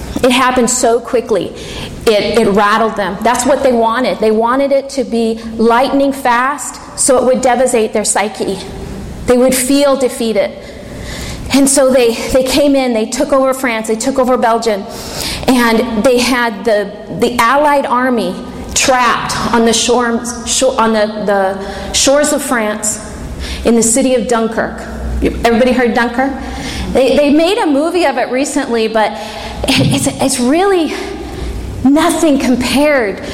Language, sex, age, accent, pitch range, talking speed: English, female, 40-59, American, 230-285 Hz, 150 wpm